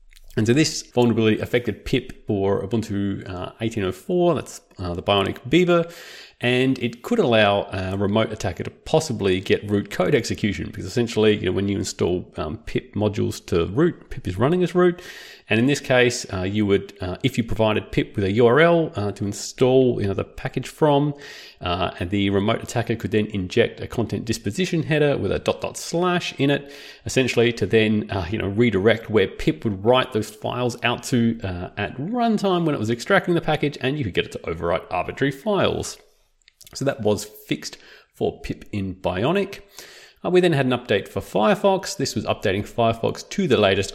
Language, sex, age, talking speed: English, male, 30-49, 195 wpm